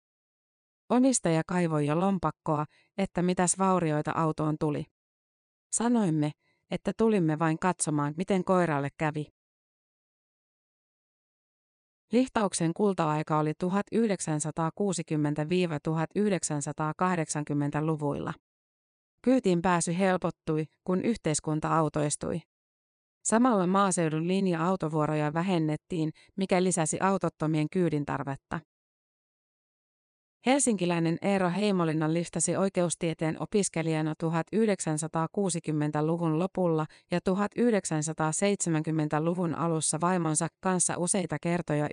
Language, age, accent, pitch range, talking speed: Finnish, 30-49, native, 155-185 Hz, 70 wpm